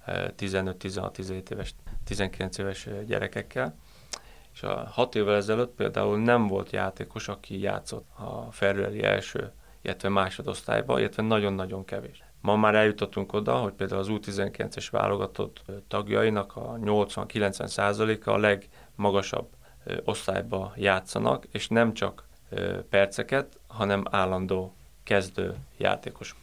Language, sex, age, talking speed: Hungarian, male, 30-49, 110 wpm